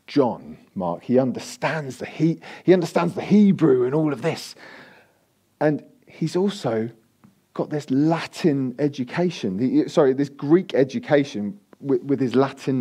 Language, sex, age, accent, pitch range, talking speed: English, male, 40-59, British, 135-180 Hz, 140 wpm